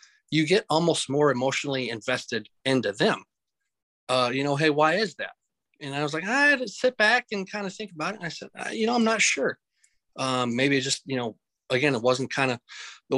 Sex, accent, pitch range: male, American, 125-155 Hz